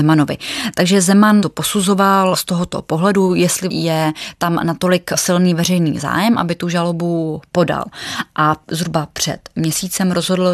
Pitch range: 165-185 Hz